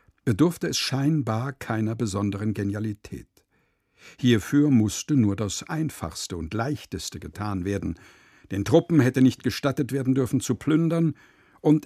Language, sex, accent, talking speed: German, male, German, 125 wpm